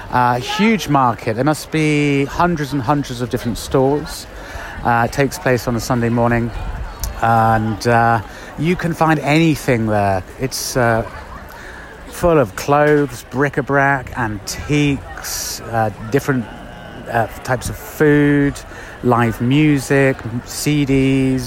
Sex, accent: male, British